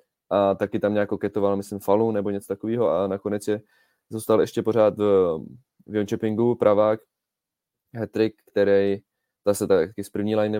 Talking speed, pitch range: 145 wpm, 95-105 Hz